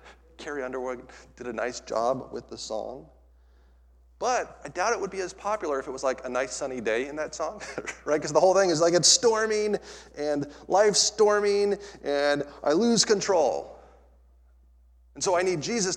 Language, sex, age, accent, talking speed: English, male, 30-49, American, 185 wpm